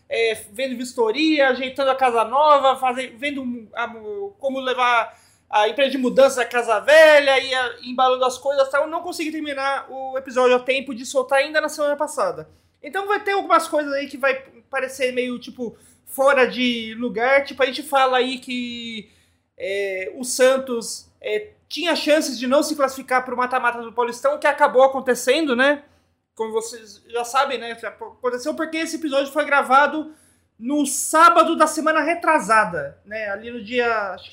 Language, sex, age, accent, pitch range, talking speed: Portuguese, male, 20-39, Brazilian, 245-300 Hz, 175 wpm